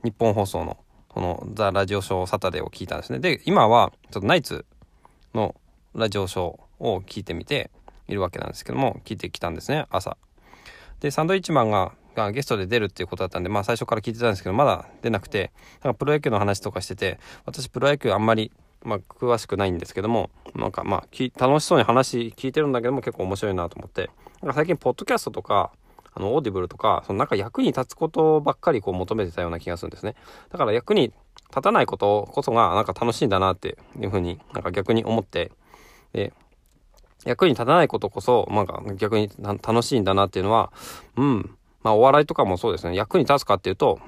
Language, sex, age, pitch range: Japanese, male, 20-39, 95-130 Hz